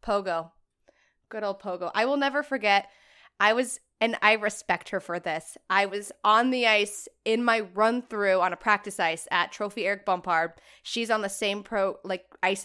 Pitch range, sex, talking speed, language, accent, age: 195-255 Hz, female, 185 wpm, English, American, 20-39